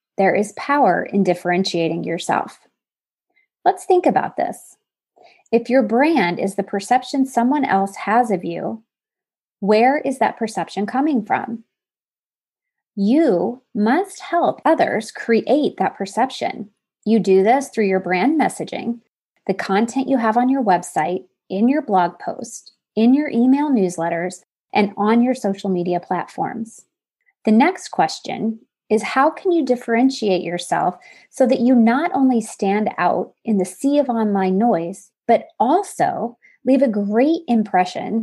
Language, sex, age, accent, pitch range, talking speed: English, female, 20-39, American, 200-270 Hz, 140 wpm